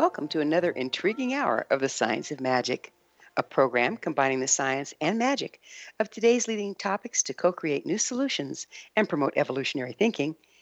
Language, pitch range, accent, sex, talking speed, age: English, 135-225 Hz, American, female, 165 wpm, 60-79